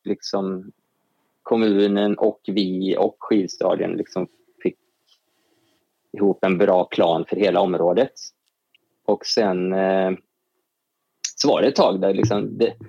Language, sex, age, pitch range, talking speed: Swedish, male, 20-39, 100-120 Hz, 115 wpm